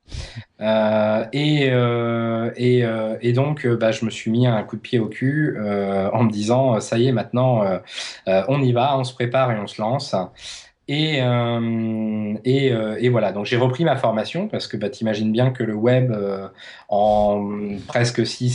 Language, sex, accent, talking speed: French, male, French, 195 wpm